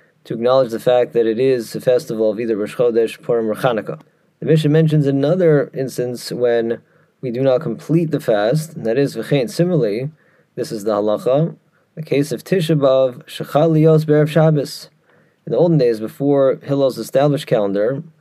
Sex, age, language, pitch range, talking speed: male, 30-49, English, 125-160 Hz, 175 wpm